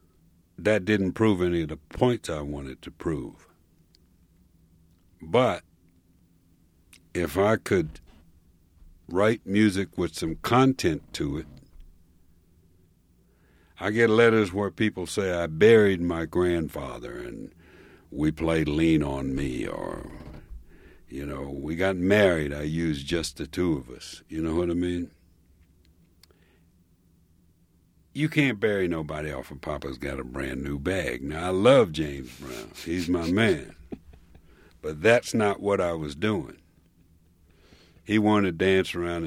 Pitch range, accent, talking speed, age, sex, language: 80-90 Hz, American, 135 wpm, 60-79, male, English